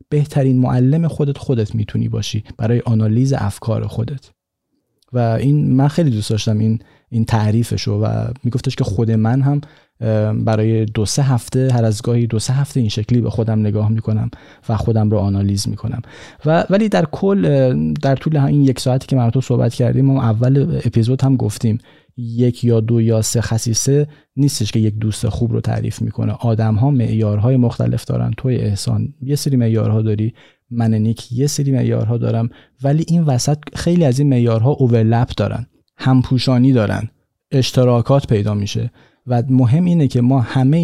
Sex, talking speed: male, 170 wpm